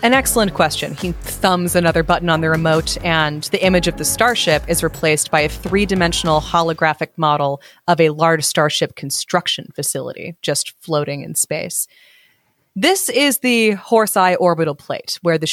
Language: English